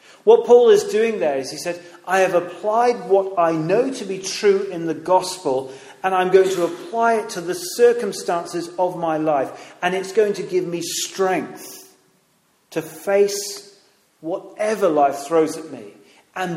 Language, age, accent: English, 40-59, British